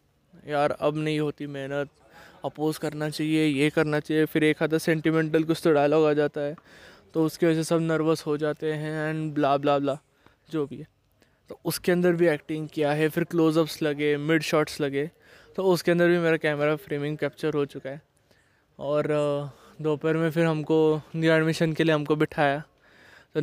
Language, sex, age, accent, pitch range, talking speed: Hindi, male, 20-39, native, 145-165 Hz, 185 wpm